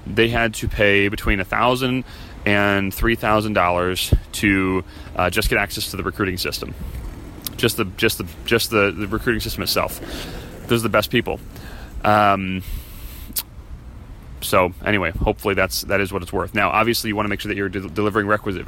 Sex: male